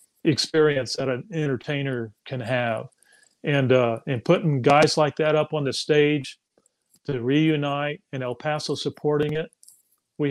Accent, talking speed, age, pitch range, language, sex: American, 145 wpm, 40-59, 125-150 Hz, English, male